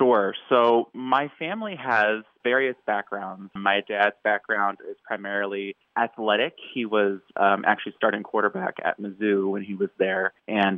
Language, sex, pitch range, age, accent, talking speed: English, male, 100-110 Hz, 20-39, American, 145 wpm